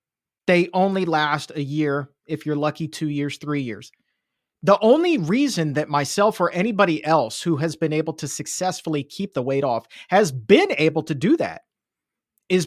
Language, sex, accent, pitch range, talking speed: English, male, American, 145-185 Hz, 175 wpm